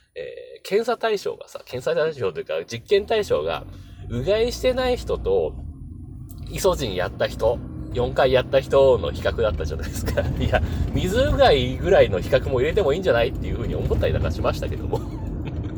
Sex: male